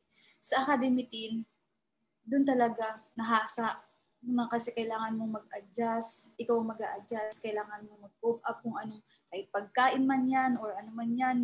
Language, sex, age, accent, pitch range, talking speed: English, female, 20-39, Filipino, 215-250 Hz, 135 wpm